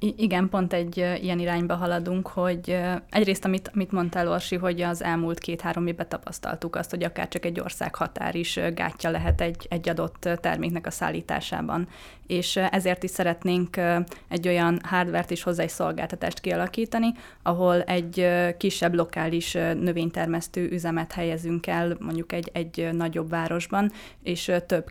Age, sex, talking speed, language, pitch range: 20-39, female, 145 wpm, Hungarian, 170-185 Hz